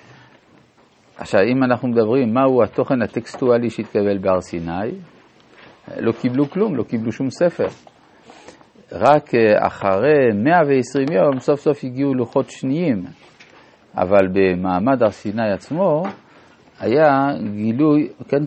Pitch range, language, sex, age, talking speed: 100-135 Hz, Hebrew, male, 50-69, 110 wpm